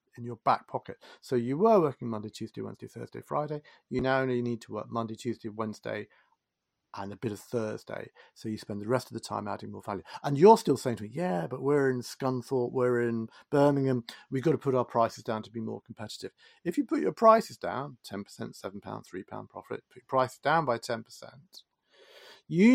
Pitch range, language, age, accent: 120-160 Hz, English, 50-69, British